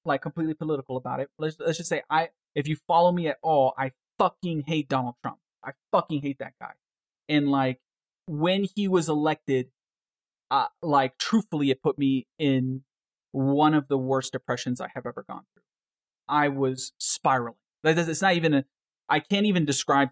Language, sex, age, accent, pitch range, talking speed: English, male, 30-49, American, 130-155 Hz, 180 wpm